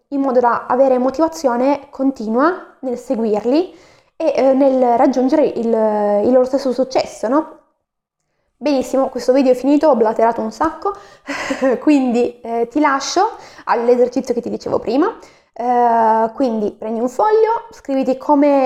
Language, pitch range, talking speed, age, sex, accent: Italian, 240-290 Hz, 140 wpm, 20-39, female, native